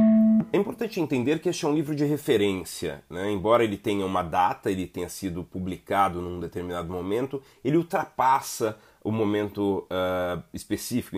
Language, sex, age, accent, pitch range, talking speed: Portuguese, male, 30-49, Brazilian, 100-135 Hz, 150 wpm